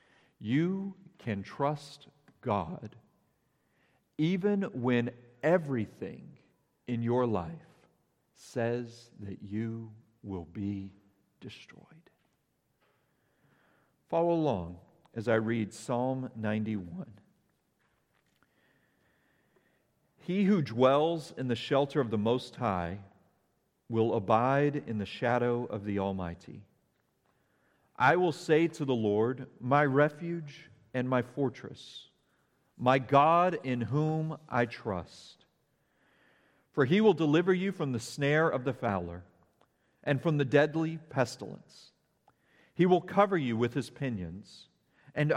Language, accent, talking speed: English, American, 110 wpm